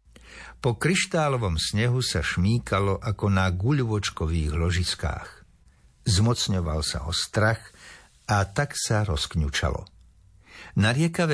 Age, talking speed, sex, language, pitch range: 60-79, 95 wpm, male, Slovak, 85-120 Hz